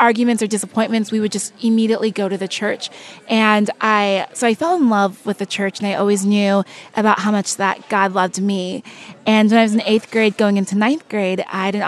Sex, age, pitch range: female, 20-39, 200-230 Hz